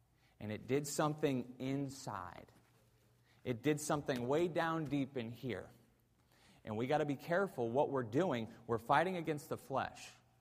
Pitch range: 130-180 Hz